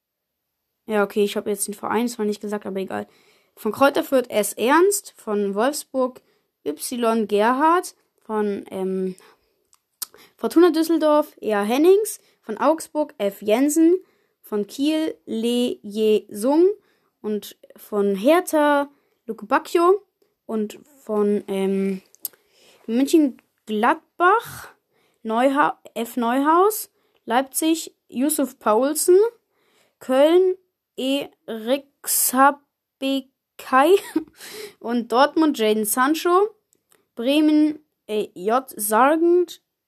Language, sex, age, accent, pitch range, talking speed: German, female, 20-39, German, 210-335 Hz, 95 wpm